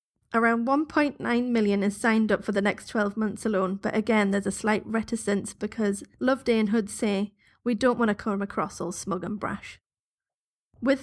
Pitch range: 205-235 Hz